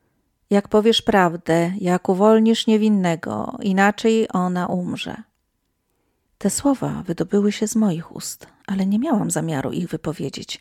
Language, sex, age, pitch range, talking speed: Polish, female, 40-59, 180-225 Hz, 125 wpm